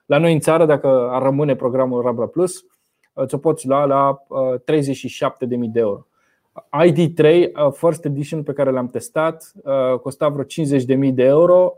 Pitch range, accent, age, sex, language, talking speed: 130-155 Hz, native, 20-39, male, Romanian, 150 wpm